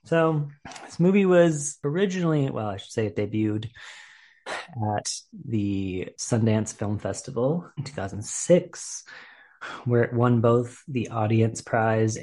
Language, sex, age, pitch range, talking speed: English, male, 30-49, 110-150 Hz, 125 wpm